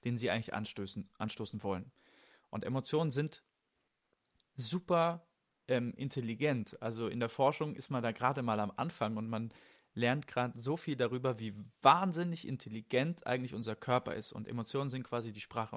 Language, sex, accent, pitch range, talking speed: German, male, German, 115-140 Hz, 160 wpm